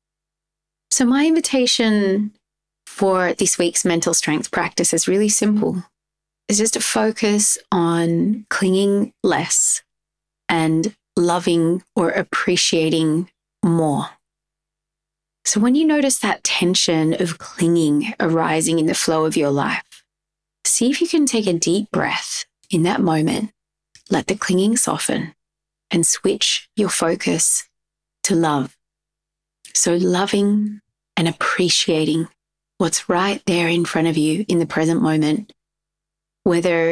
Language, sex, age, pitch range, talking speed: English, female, 30-49, 160-205 Hz, 125 wpm